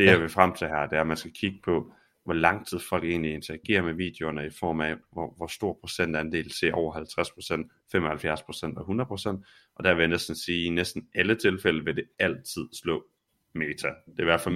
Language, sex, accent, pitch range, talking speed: Danish, male, native, 80-95 Hz, 225 wpm